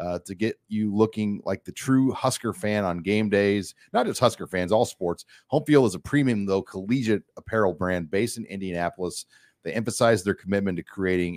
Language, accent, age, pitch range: English, American, 40-59, 95-120 Hz